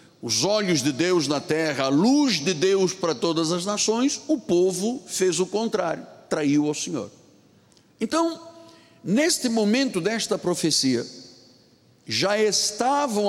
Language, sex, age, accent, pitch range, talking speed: Portuguese, male, 60-79, Brazilian, 160-225 Hz, 130 wpm